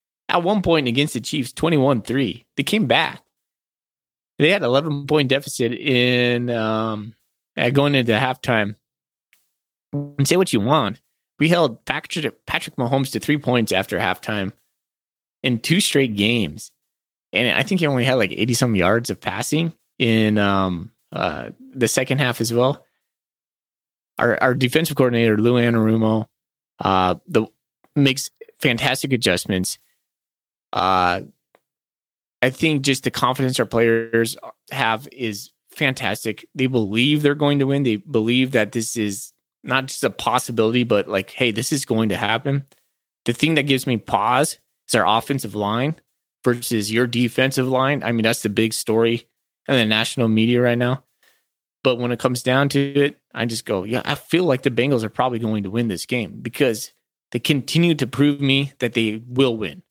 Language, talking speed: English, 165 wpm